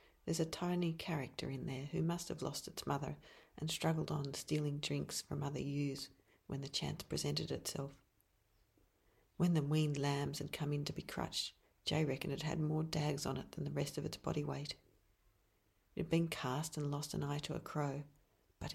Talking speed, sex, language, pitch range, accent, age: 200 wpm, female, English, 130-160 Hz, Australian, 40-59